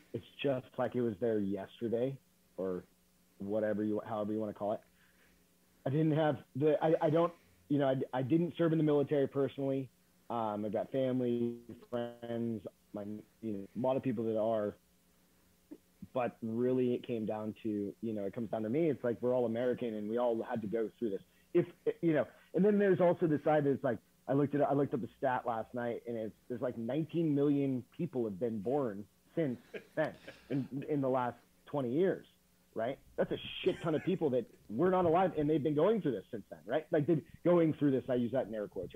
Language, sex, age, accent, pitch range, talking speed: English, male, 30-49, American, 115-150 Hz, 220 wpm